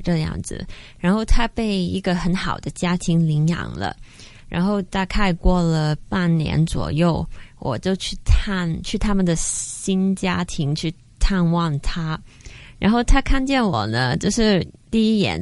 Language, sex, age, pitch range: Chinese, female, 20-39, 160-195 Hz